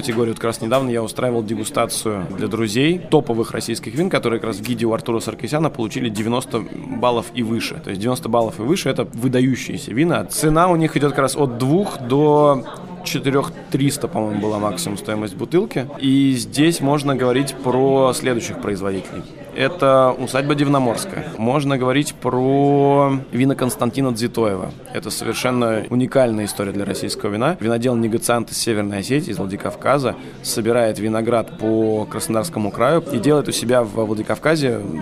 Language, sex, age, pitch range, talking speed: Russian, male, 20-39, 115-135 Hz, 160 wpm